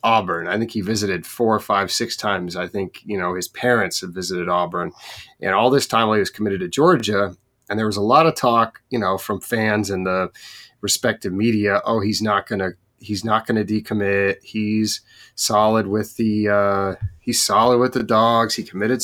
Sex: male